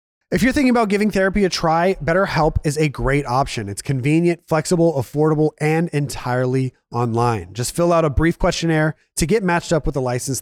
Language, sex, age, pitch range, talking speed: English, male, 30-49, 120-165 Hz, 190 wpm